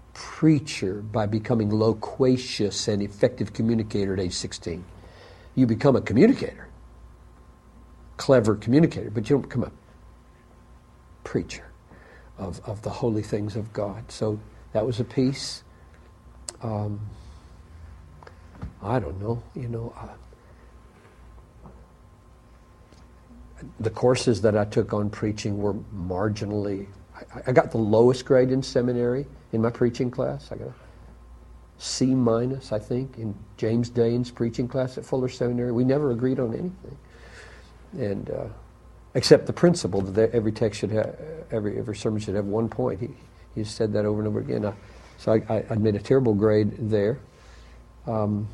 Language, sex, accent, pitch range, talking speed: English, male, American, 100-120 Hz, 145 wpm